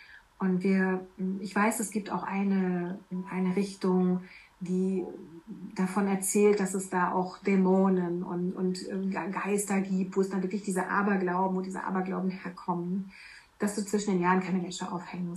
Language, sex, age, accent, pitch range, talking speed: German, female, 40-59, German, 185-205 Hz, 155 wpm